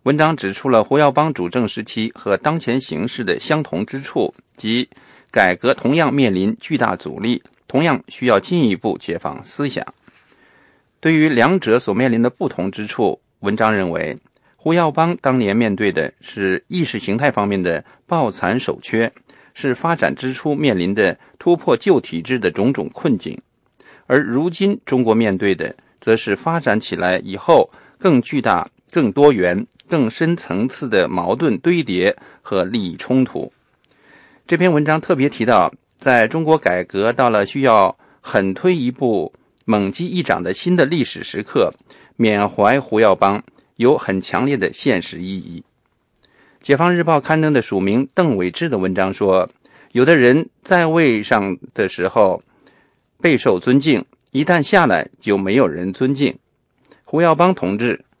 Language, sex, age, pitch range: English, male, 50-69, 105-160 Hz